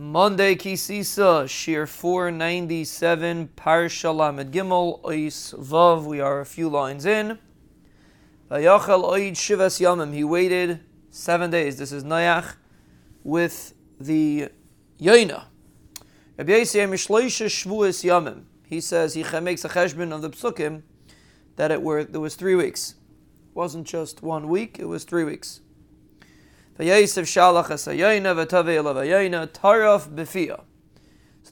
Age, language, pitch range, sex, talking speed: 30-49, English, 155-190 Hz, male, 95 wpm